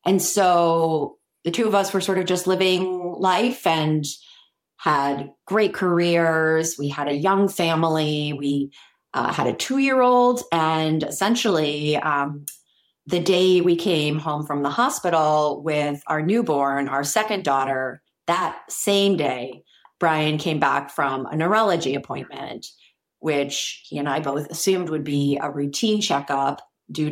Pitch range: 140-180 Hz